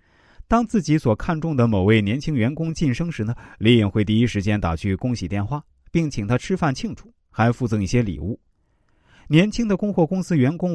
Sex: male